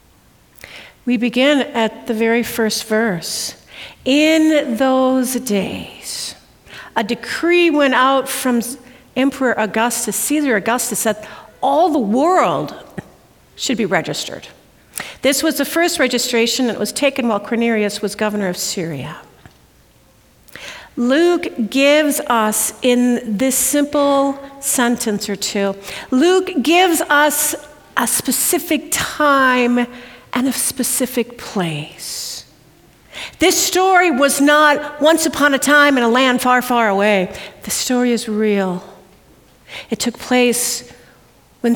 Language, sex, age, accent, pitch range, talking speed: English, female, 50-69, American, 225-295 Hz, 115 wpm